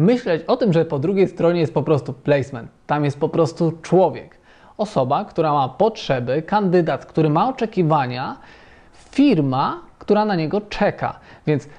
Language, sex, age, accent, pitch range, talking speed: Polish, male, 20-39, native, 155-200 Hz, 155 wpm